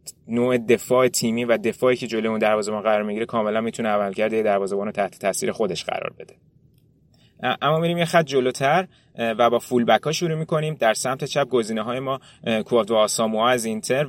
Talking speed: 185 wpm